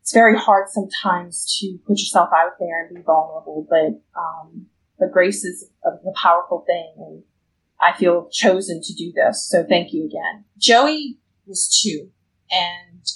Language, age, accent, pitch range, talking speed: English, 20-39, American, 175-210 Hz, 165 wpm